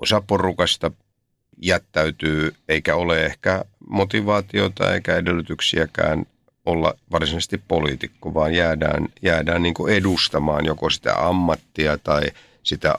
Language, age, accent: Finnish, 50-69, native